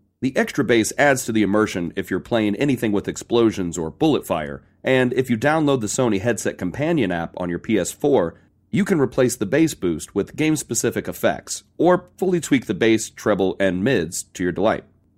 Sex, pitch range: male, 95-145 Hz